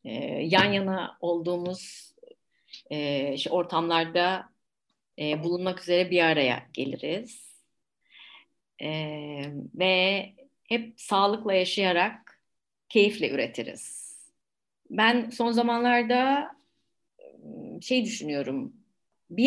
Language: Turkish